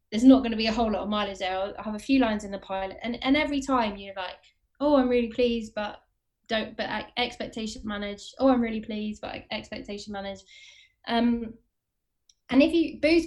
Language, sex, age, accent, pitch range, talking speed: English, female, 10-29, British, 200-255 Hz, 210 wpm